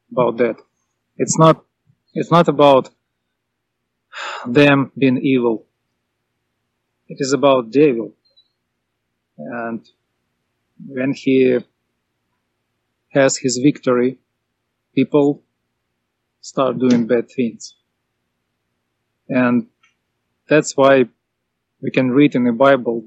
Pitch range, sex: 115-140 Hz, male